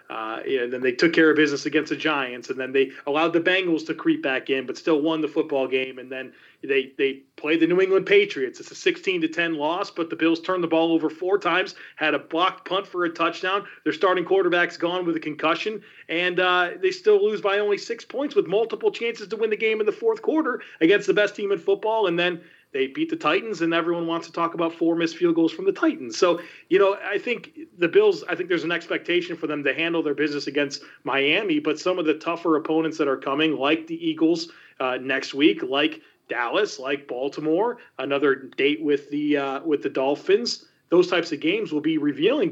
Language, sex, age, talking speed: English, male, 30-49, 230 wpm